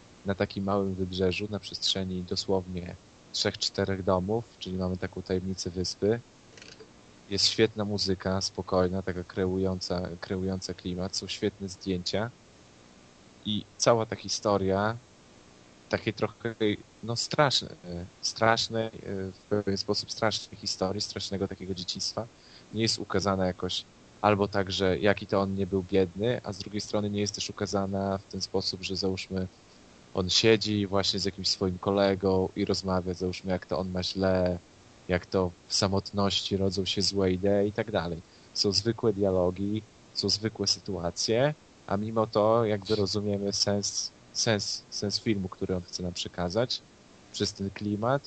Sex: male